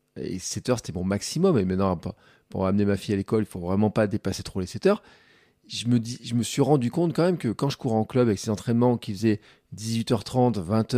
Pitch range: 105-125 Hz